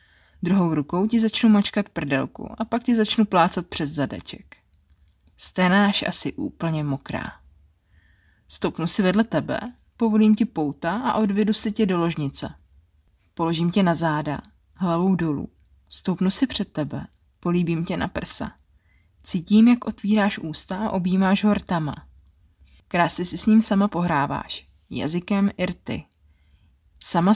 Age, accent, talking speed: 20-39, native, 130 wpm